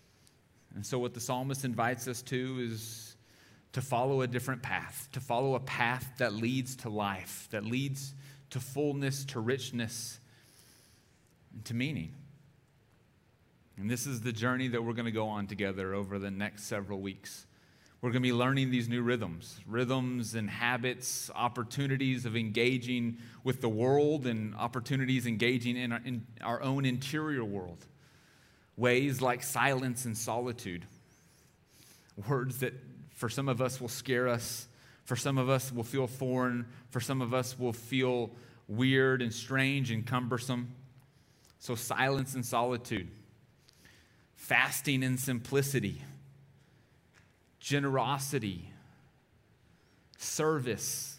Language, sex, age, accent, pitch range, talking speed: English, male, 30-49, American, 115-130 Hz, 135 wpm